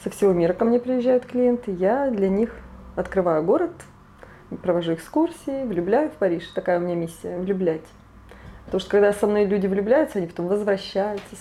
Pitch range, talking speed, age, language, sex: 170-210 Hz, 175 wpm, 20-39, Russian, female